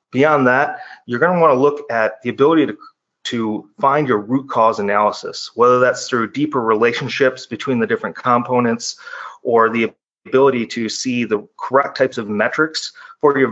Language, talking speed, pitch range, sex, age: English, 165 wpm, 115-145 Hz, male, 30-49